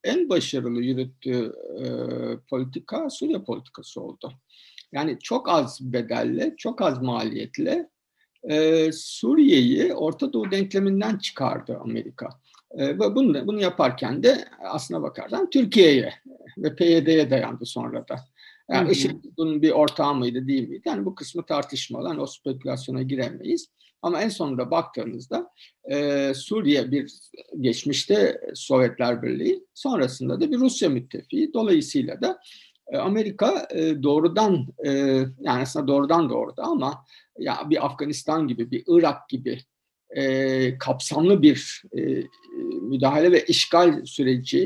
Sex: male